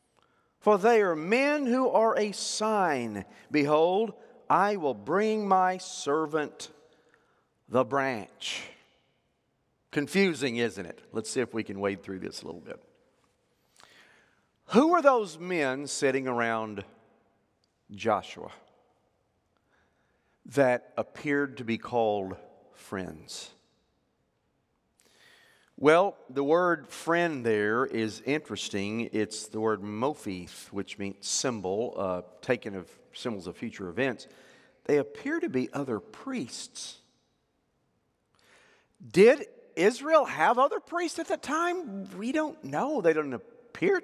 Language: English